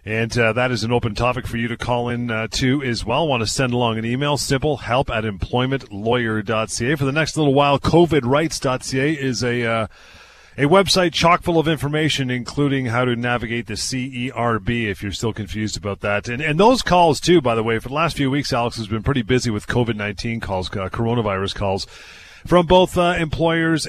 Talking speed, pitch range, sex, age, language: 205 wpm, 105-130 Hz, male, 30-49, English